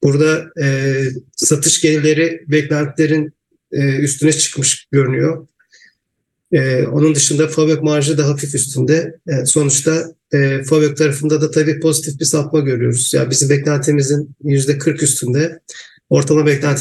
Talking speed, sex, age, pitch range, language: 120 wpm, male, 40-59, 145-165 Hz, English